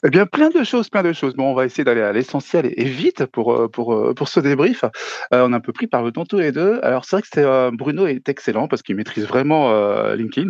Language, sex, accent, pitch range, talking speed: French, male, French, 110-140 Hz, 285 wpm